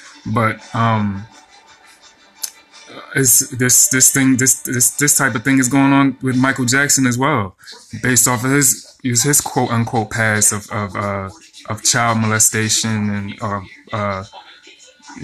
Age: 20-39